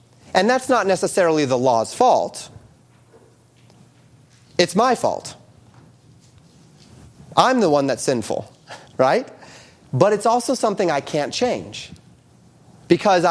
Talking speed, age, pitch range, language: 110 wpm, 30-49, 140-195 Hz, English